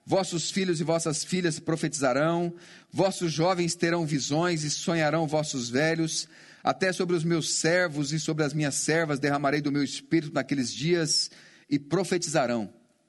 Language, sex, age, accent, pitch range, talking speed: Portuguese, male, 40-59, Brazilian, 160-195 Hz, 145 wpm